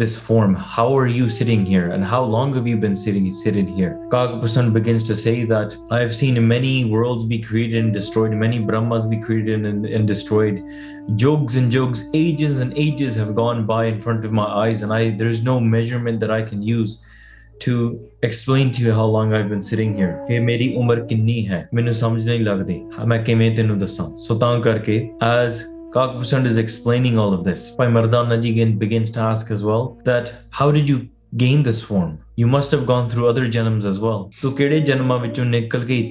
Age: 20-39